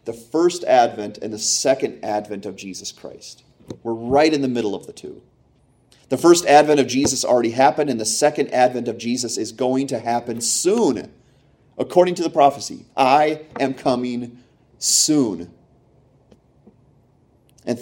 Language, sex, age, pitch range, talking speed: English, male, 30-49, 115-150 Hz, 150 wpm